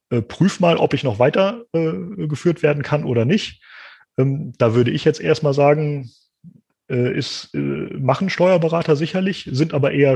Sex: male